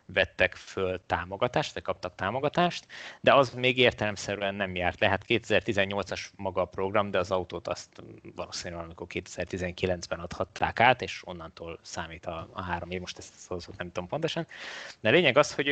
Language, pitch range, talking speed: Hungarian, 90-110 Hz, 155 wpm